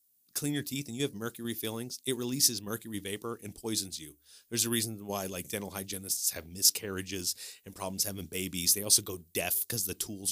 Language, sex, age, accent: English, male, 30-49, American